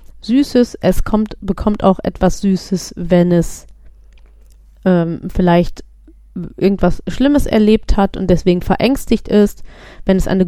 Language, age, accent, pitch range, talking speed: German, 30-49, German, 185-235 Hz, 125 wpm